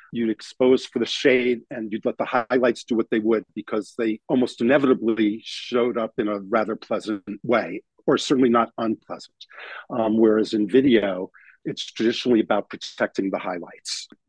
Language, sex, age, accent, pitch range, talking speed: English, male, 50-69, American, 105-125 Hz, 165 wpm